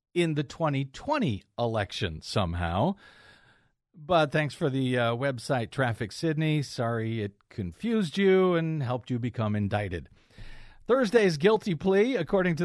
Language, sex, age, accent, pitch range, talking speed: English, male, 50-69, American, 125-185 Hz, 130 wpm